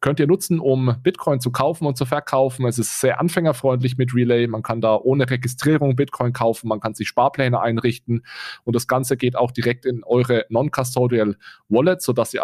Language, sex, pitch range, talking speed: German, male, 115-135 Hz, 195 wpm